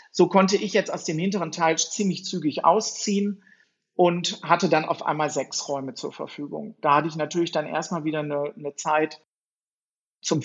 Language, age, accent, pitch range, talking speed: German, 50-69, German, 155-190 Hz, 180 wpm